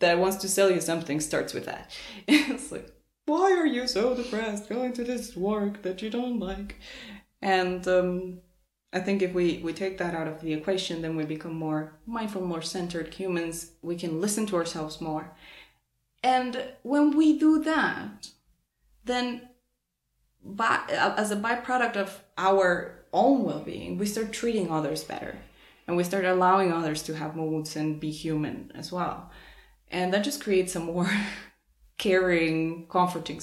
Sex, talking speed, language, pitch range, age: female, 160 wpm, English, 160-205 Hz, 20-39